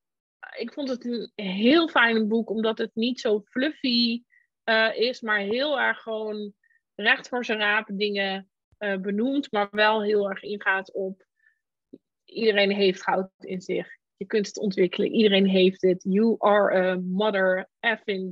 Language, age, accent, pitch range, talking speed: Dutch, 20-39, Dutch, 205-240 Hz, 155 wpm